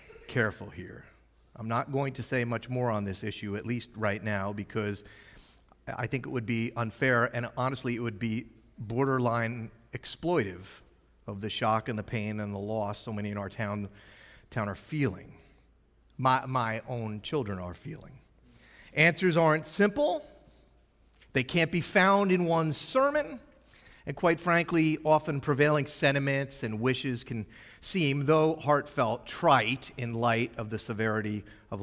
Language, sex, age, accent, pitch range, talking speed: English, male, 40-59, American, 110-140 Hz, 155 wpm